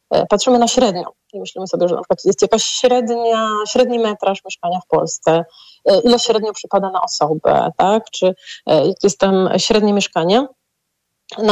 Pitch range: 205-245 Hz